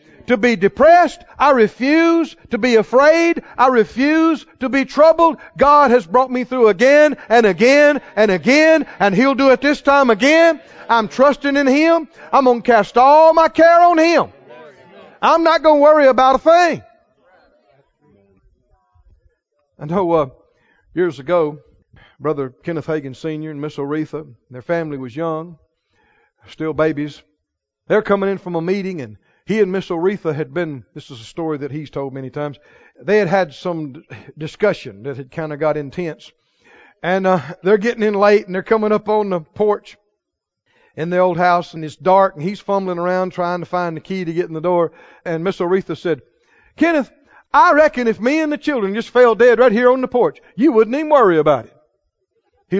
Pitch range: 165-275 Hz